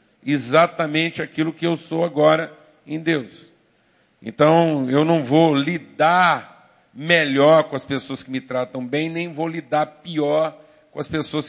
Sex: male